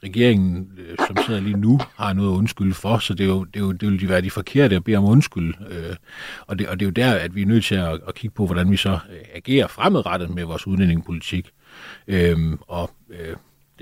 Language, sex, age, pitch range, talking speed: Danish, male, 40-59, 90-115 Hz, 235 wpm